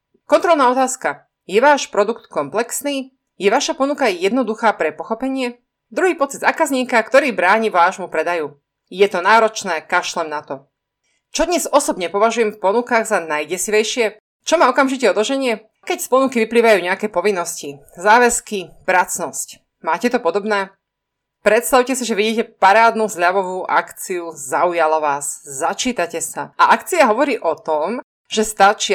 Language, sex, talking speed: Slovak, female, 135 wpm